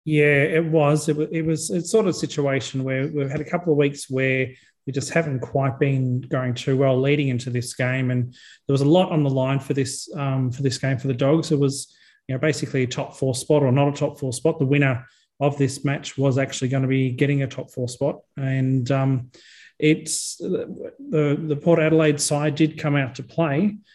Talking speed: 225 wpm